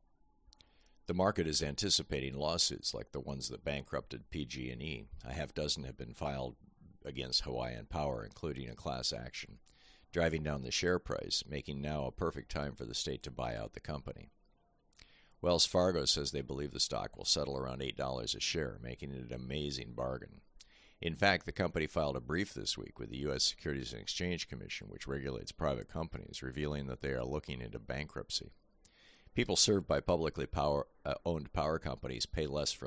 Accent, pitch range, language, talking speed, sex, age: American, 65-80 Hz, English, 175 wpm, male, 50-69